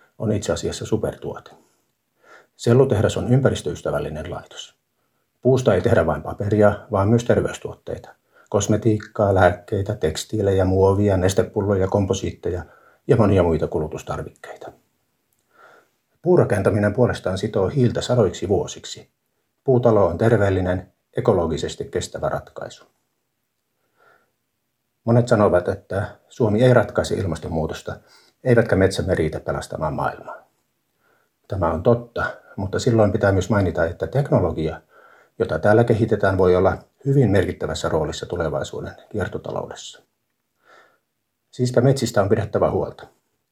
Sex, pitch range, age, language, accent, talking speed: male, 95-115 Hz, 50-69, Finnish, native, 105 wpm